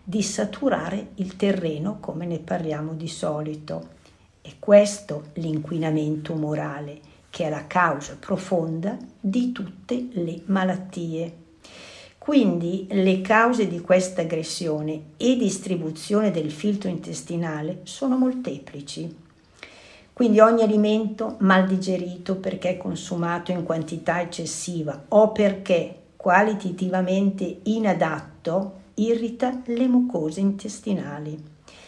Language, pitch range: Italian, 160-195 Hz